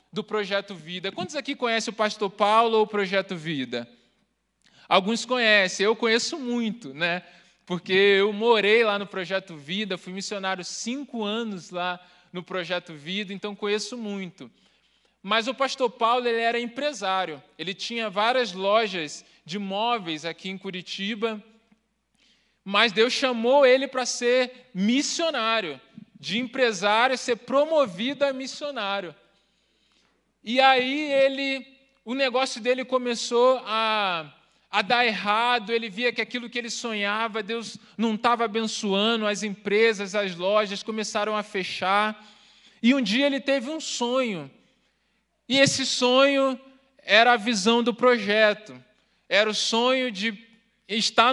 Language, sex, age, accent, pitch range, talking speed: Portuguese, male, 20-39, Brazilian, 200-245 Hz, 135 wpm